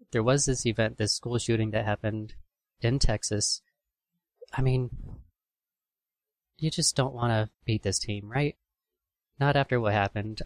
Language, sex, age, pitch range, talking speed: English, male, 30-49, 105-135 Hz, 150 wpm